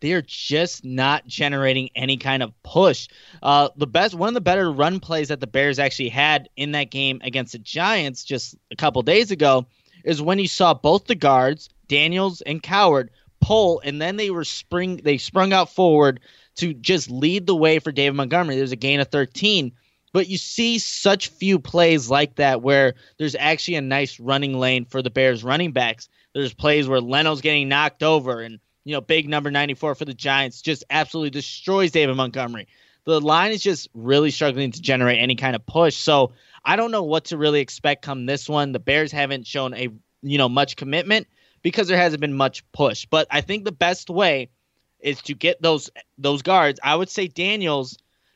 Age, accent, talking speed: 20-39, American, 200 wpm